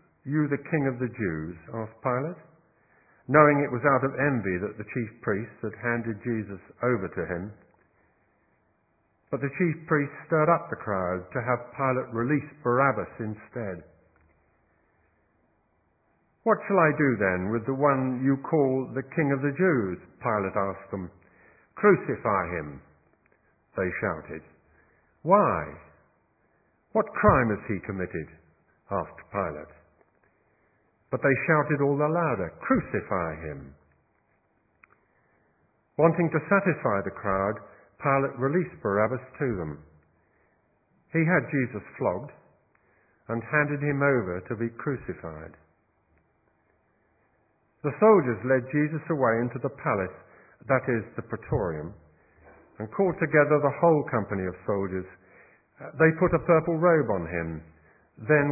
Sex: male